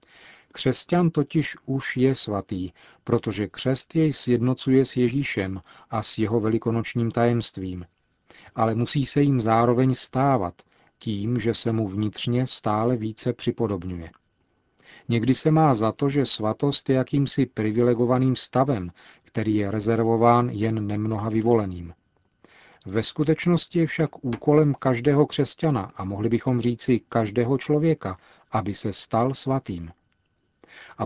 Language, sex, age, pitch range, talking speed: Czech, male, 40-59, 110-135 Hz, 125 wpm